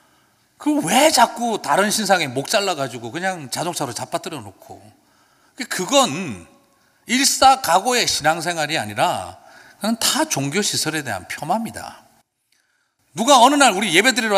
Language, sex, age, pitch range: Korean, male, 40-59, 135-220 Hz